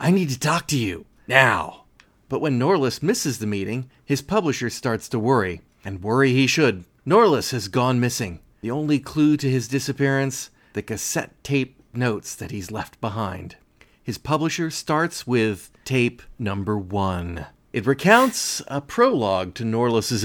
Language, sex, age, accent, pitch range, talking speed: English, male, 30-49, American, 110-150 Hz, 155 wpm